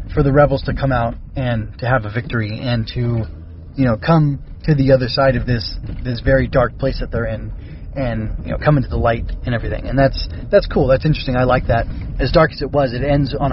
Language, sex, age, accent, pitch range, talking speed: English, male, 20-39, American, 120-155 Hz, 245 wpm